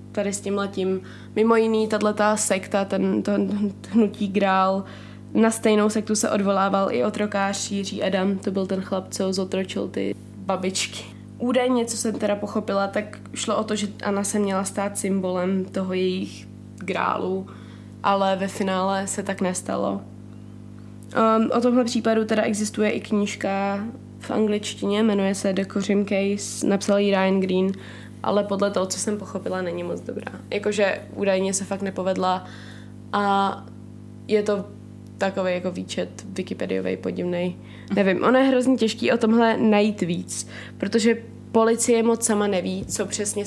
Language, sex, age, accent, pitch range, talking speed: Czech, female, 20-39, native, 180-210 Hz, 150 wpm